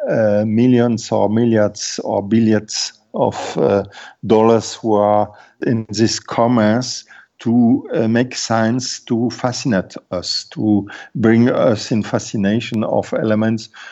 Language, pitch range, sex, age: English, 110-135 Hz, male, 50-69